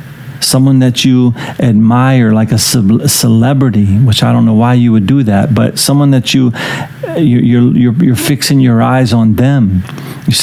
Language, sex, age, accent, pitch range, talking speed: English, male, 40-59, American, 120-140 Hz, 165 wpm